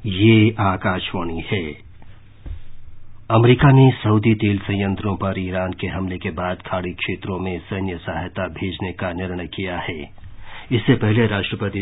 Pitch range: 95-105 Hz